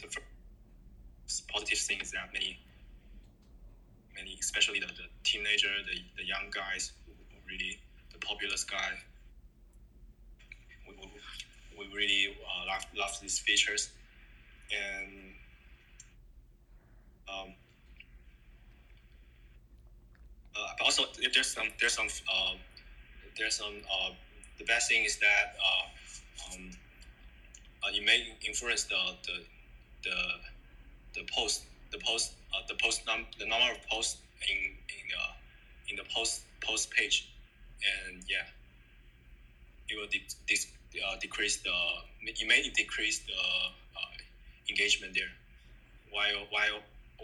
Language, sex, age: English, male, 20-39